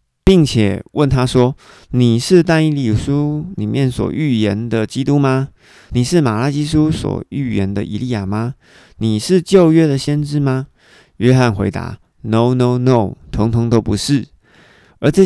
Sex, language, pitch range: male, Chinese, 105-140 Hz